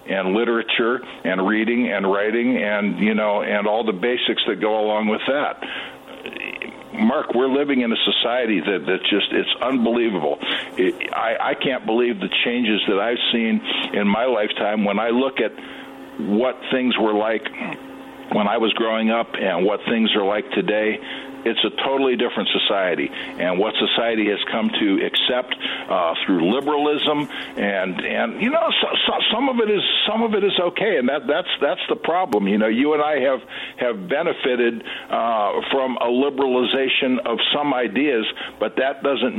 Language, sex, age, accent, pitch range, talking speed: English, male, 60-79, American, 110-135 Hz, 175 wpm